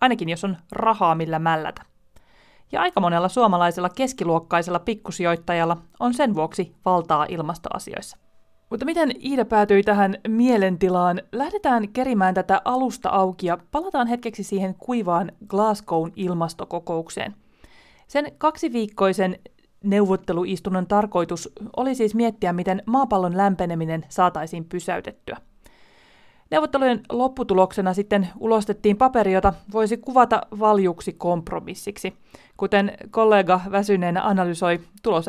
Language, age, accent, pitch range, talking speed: Finnish, 30-49, native, 170-220 Hz, 105 wpm